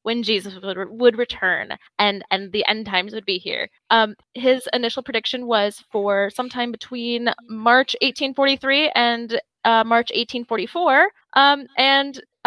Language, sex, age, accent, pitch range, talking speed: English, female, 10-29, American, 220-285 Hz, 145 wpm